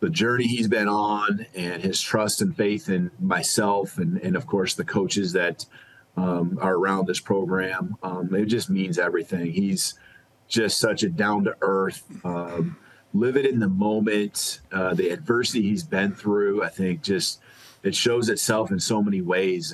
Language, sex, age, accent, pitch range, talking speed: English, male, 30-49, American, 95-110 Hz, 175 wpm